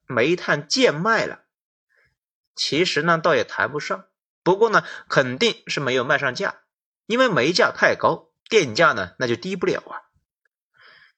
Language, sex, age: Chinese, male, 30-49